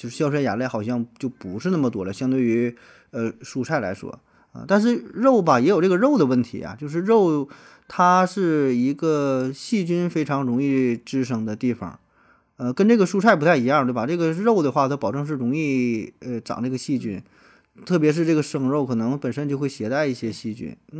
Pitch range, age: 120-170 Hz, 20-39